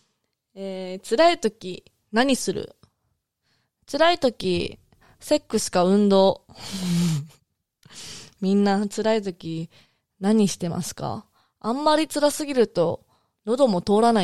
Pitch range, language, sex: 190-275 Hz, Japanese, female